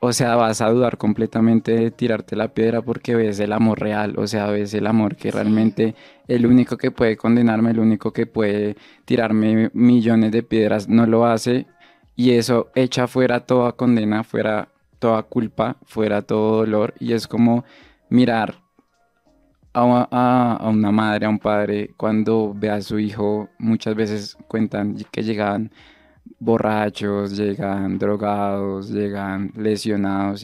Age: 20-39